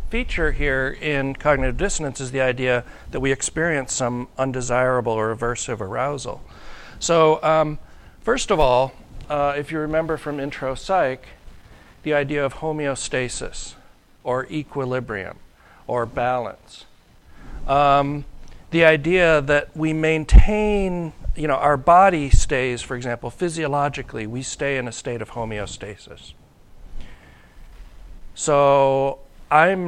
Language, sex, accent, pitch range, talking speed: English, male, American, 115-150 Hz, 120 wpm